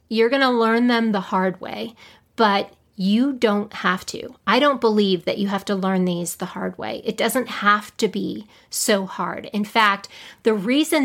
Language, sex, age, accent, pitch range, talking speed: English, female, 30-49, American, 200-245 Hz, 195 wpm